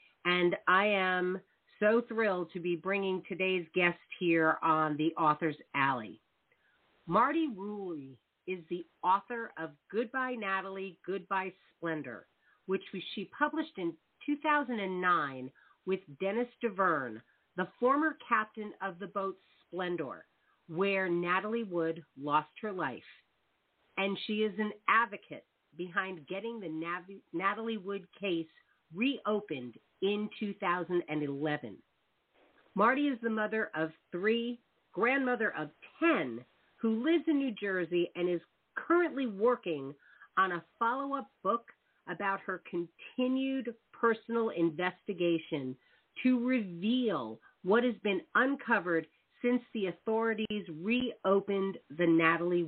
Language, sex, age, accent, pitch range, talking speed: English, female, 40-59, American, 175-230 Hz, 115 wpm